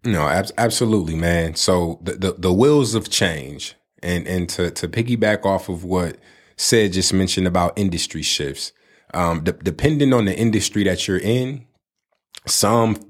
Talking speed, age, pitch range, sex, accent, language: 155 wpm, 20-39, 90-110 Hz, male, American, English